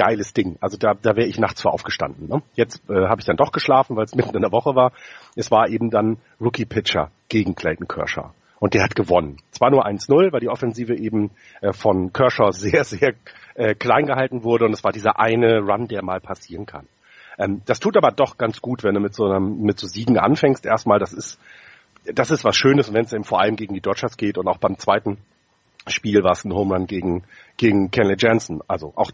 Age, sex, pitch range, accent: 40-59, male, 100-125 Hz, German